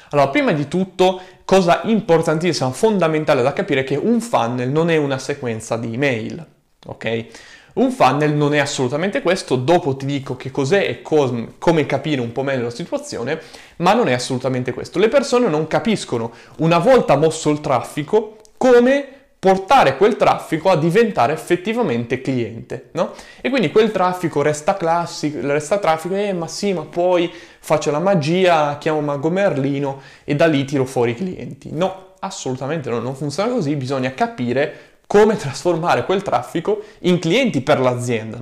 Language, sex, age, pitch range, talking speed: Italian, male, 20-39, 130-180 Hz, 160 wpm